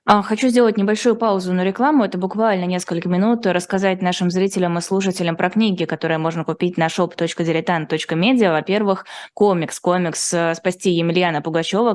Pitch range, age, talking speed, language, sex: 165-190 Hz, 20-39, 140 wpm, Russian, female